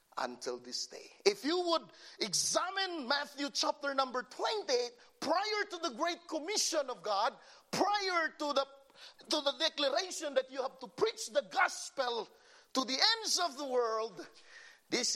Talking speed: 150 wpm